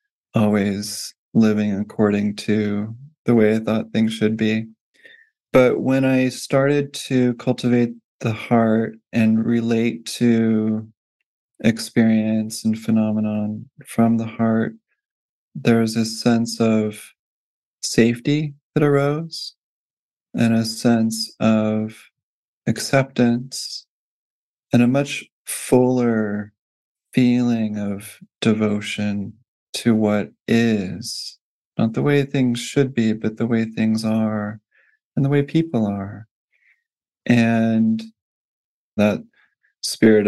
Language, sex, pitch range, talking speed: English, male, 105-125 Hz, 105 wpm